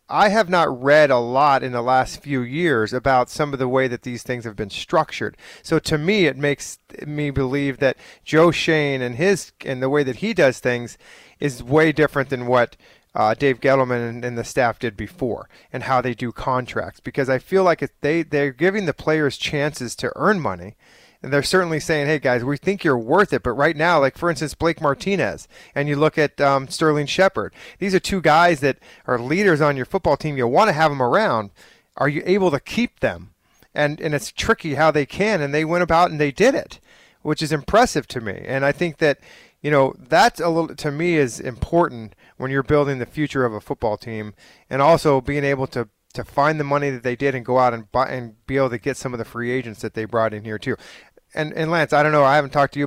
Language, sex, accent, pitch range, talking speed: English, male, American, 125-155 Hz, 235 wpm